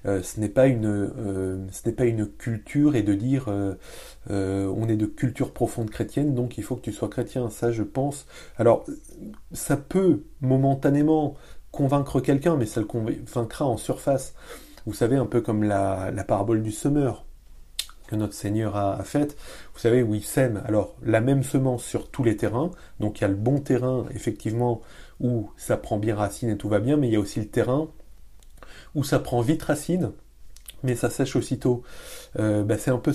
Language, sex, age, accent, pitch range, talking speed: French, male, 30-49, French, 105-135 Hz, 195 wpm